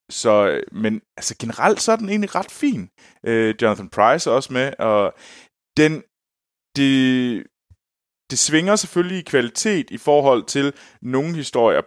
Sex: male